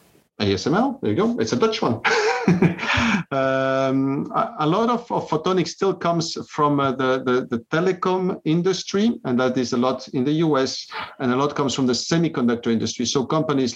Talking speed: 185 wpm